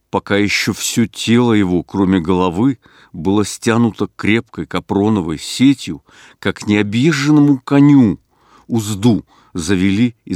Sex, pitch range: male, 95-115 Hz